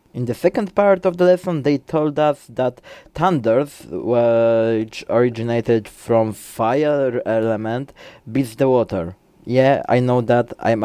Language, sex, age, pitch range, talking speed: English, male, 20-39, 110-135 Hz, 140 wpm